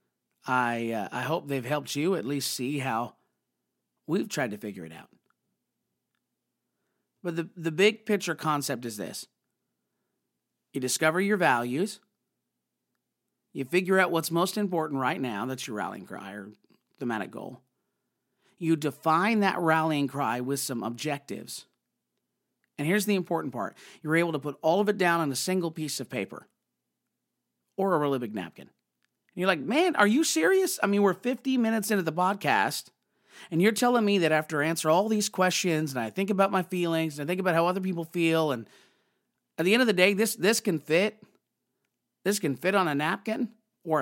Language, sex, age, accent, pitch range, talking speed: English, male, 50-69, American, 145-200 Hz, 180 wpm